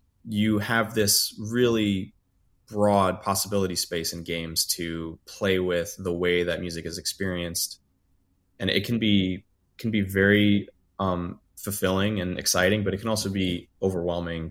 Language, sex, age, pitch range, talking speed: English, male, 20-39, 90-100 Hz, 145 wpm